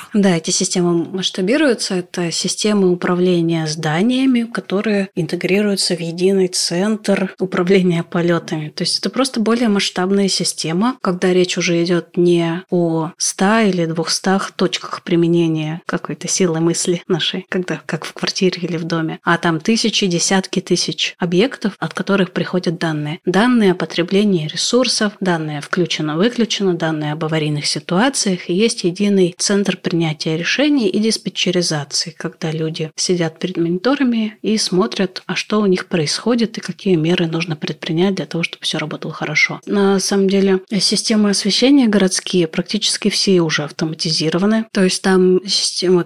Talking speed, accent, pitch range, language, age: 140 wpm, native, 170-195 Hz, Russian, 30-49